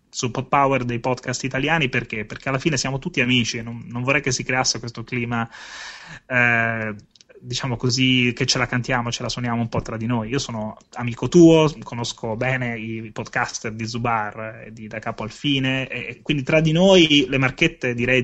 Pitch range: 115-140 Hz